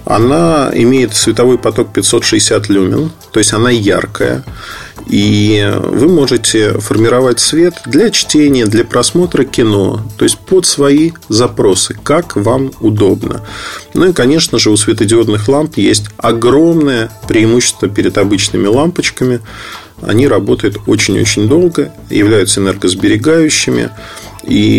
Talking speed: 115 wpm